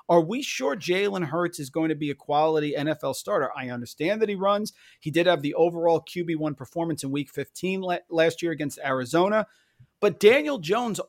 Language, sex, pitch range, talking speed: English, male, 145-180 Hz, 190 wpm